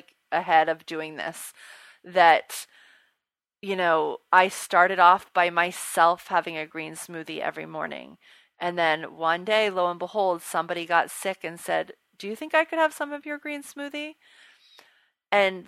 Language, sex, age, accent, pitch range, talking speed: English, female, 30-49, American, 170-205 Hz, 160 wpm